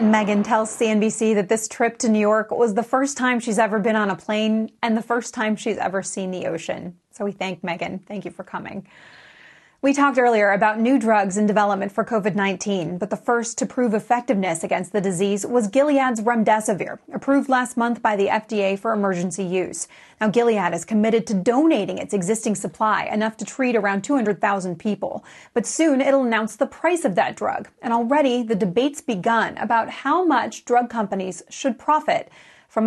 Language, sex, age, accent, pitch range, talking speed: English, female, 30-49, American, 200-240 Hz, 190 wpm